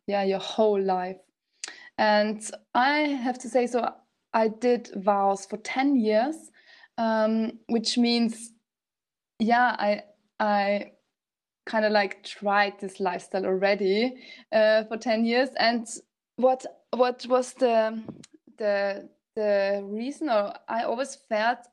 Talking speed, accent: 120 wpm, German